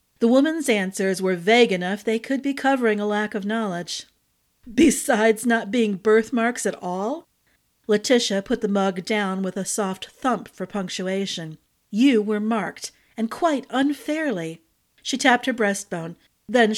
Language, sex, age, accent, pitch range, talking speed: English, female, 40-59, American, 190-240 Hz, 150 wpm